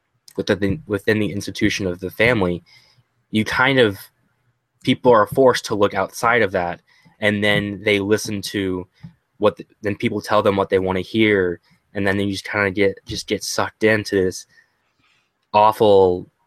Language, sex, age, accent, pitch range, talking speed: English, male, 20-39, American, 95-115 Hz, 165 wpm